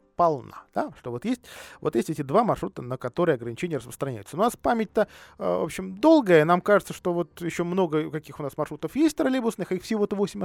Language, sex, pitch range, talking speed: Russian, male, 135-210 Hz, 200 wpm